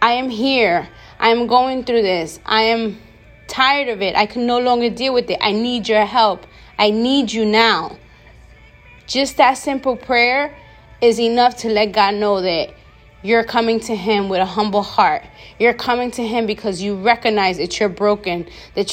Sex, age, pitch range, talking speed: female, 20-39, 205-240 Hz, 185 wpm